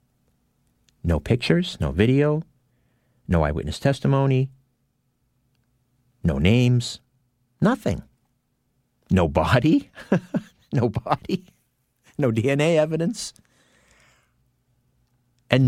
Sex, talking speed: male, 70 wpm